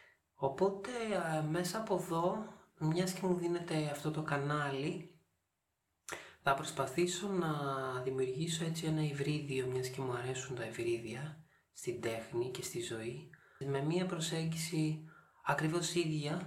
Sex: male